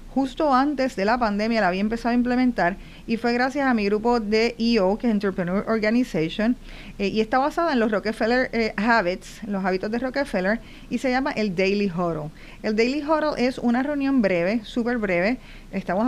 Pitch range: 195-245 Hz